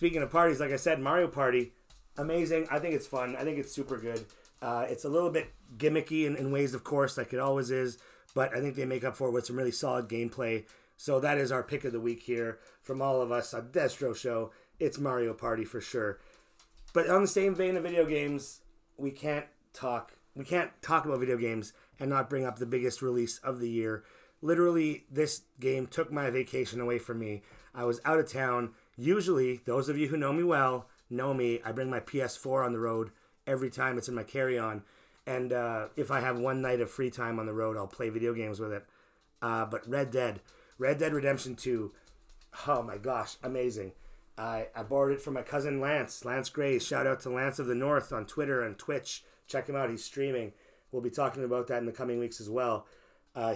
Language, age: English, 30-49